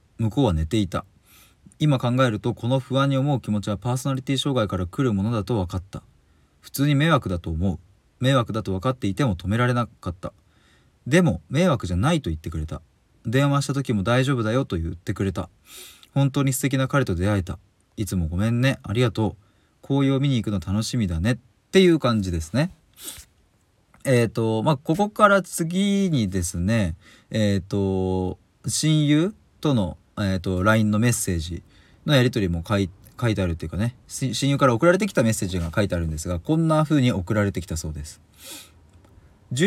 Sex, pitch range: male, 95-135 Hz